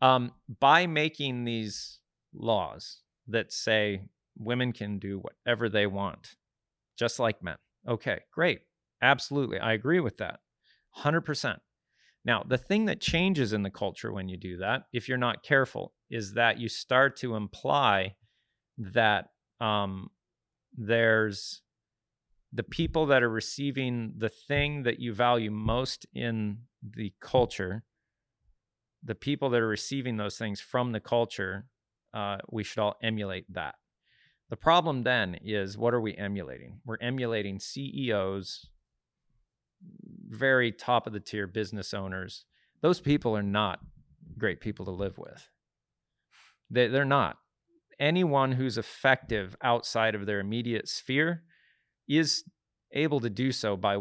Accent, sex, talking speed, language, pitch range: American, male, 135 wpm, English, 105-130 Hz